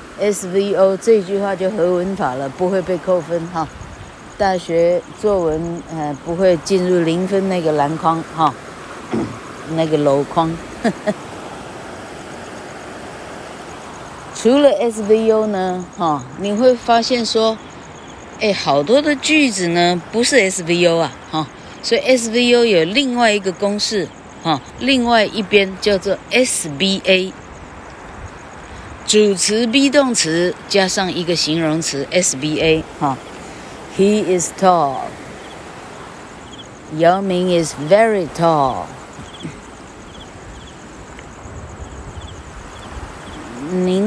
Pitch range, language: 165-210 Hz, Chinese